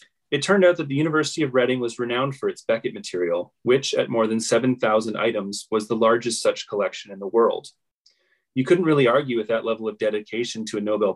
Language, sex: English, male